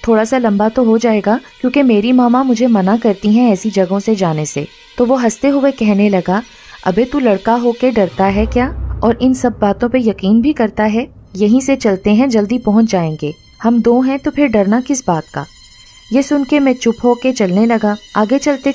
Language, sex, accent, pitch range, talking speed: Hindi, female, native, 200-250 Hz, 210 wpm